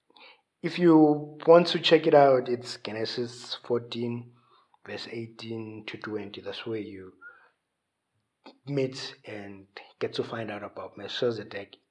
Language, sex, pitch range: English, male, 110-140 Hz